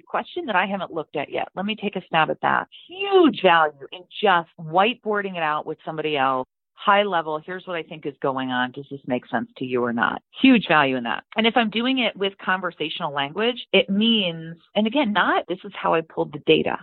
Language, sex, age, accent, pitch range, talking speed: English, female, 40-59, American, 155-210 Hz, 230 wpm